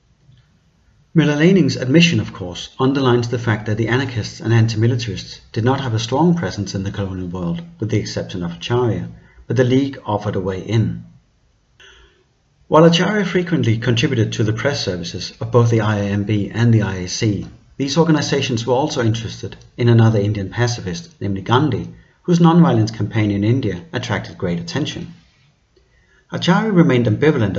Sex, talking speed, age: male, 155 wpm, 40-59